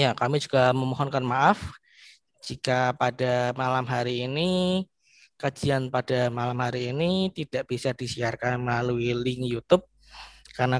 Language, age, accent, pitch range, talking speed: Indonesian, 20-39, native, 125-145 Hz, 120 wpm